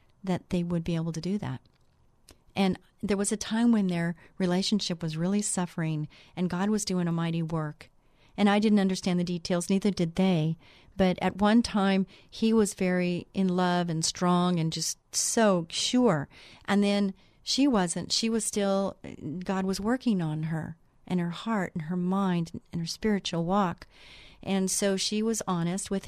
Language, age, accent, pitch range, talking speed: English, 40-59, American, 175-210 Hz, 180 wpm